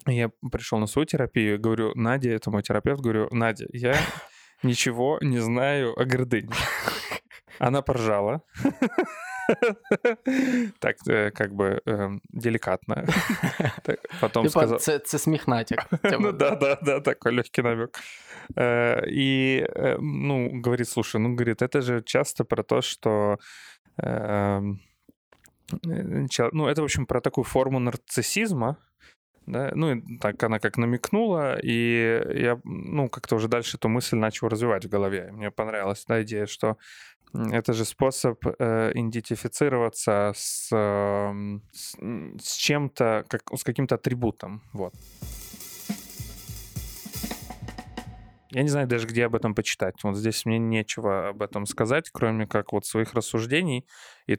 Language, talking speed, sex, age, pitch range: Ukrainian, 125 wpm, male, 20-39, 110-130 Hz